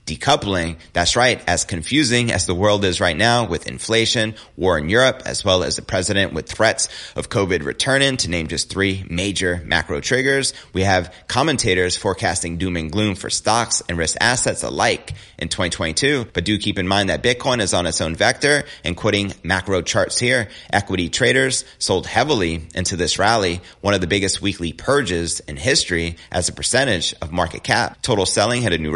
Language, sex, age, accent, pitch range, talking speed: English, male, 30-49, American, 85-110 Hz, 190 wpm